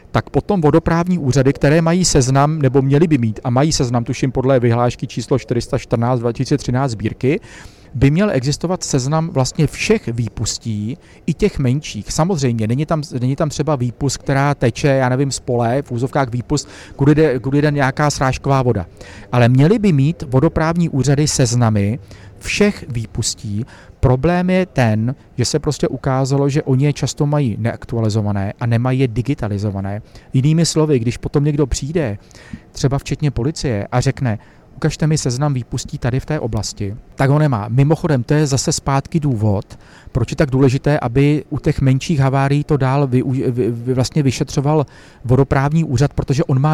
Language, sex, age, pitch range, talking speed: Czech, male, 40-59, 120-150 Hz, 160 wpm